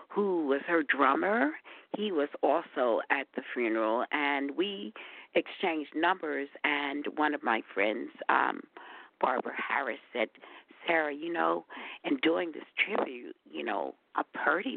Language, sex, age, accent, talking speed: English, female, 50-69, American, 140 wpm